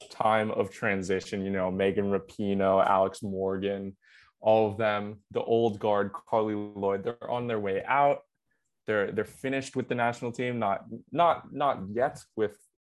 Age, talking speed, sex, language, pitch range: 20-39, 160 wpm, male, English, 100-120 Hz